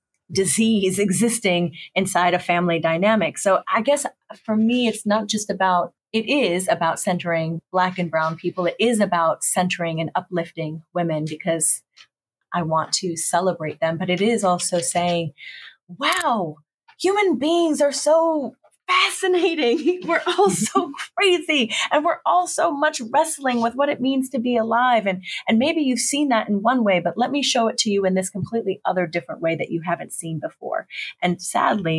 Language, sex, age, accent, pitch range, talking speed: English, female, 30-49, American, 165-230 Hz, 175 wpm